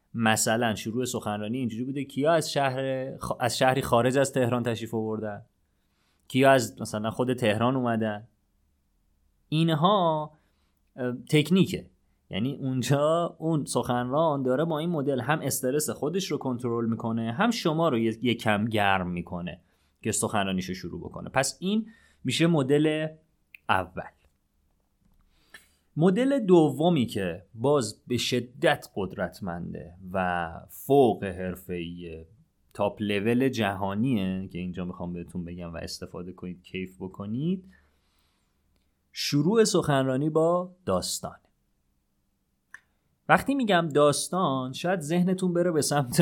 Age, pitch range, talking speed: 30-49, 95-145 Hz, 115 wpm